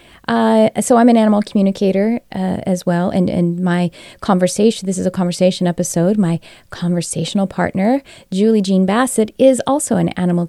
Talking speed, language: 160 wpm, English